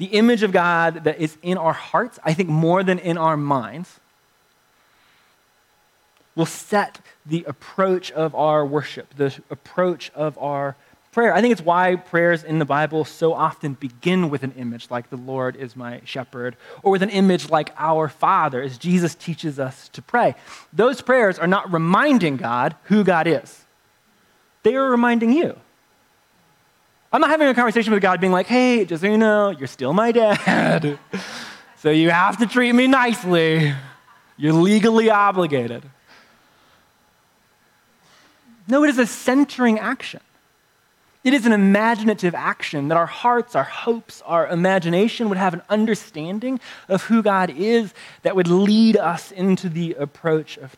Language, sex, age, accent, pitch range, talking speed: English, male, 20-39, American, 155-220 Hz, 160 wpm